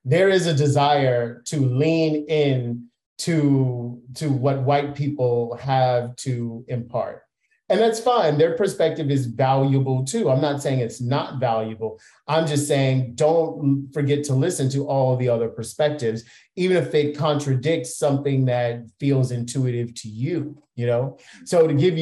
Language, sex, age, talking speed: English, male, 30-49, 155 wpm